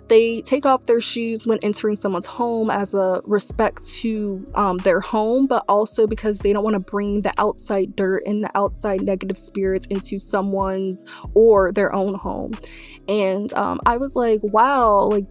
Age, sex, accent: 20-39, female, American